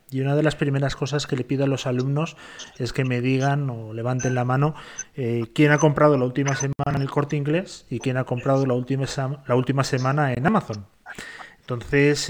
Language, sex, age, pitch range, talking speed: Spanish, male, 30-49, 130-160 Hz, 205 wpm